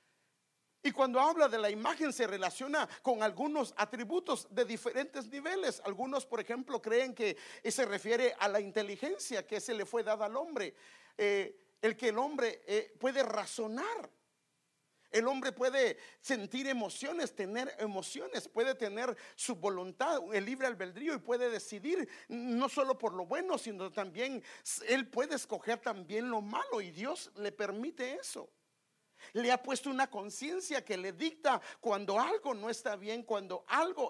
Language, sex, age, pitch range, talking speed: English, male, 50-69, 210-275 Hz, 155 wpm